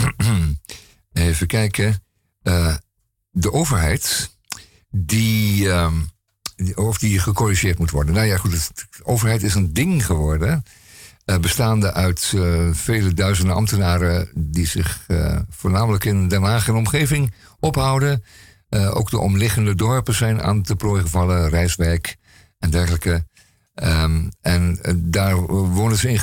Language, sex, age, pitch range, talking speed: Dutch, male, 50-69, 90-110 Hz, 135 wpm